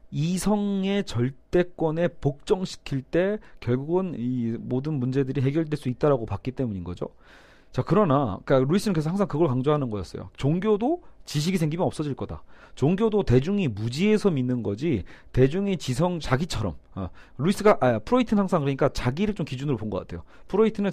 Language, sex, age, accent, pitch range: Korean, male, 40-59, native, 120-180 Hz